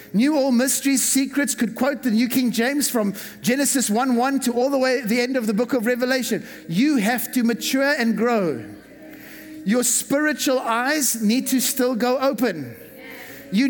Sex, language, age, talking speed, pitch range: male, English, 50-69, 175 wpm, 220-270 Hz